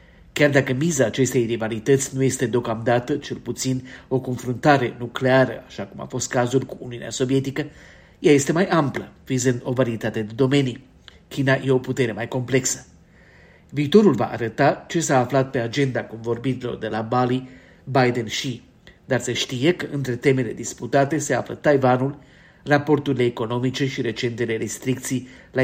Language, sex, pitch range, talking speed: Romanian, male, 120-140 Hz, 155 wpm